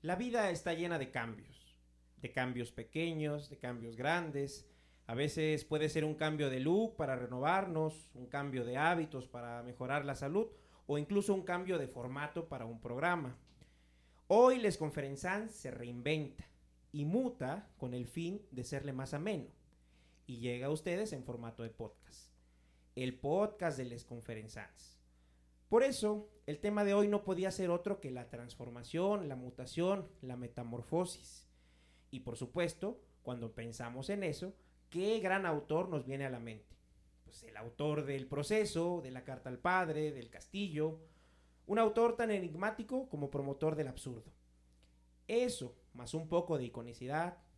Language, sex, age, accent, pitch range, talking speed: Spanish, male, 40-59, Mexican, 120-170 Hz, 155 wpm